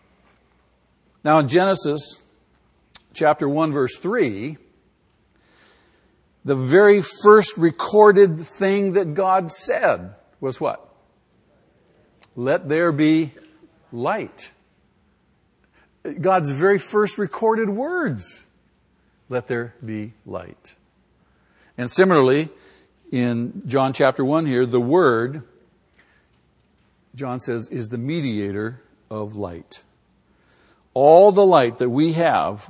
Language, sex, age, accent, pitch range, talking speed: English, male, 50-69, American, 120-165 Hz, 95 wpm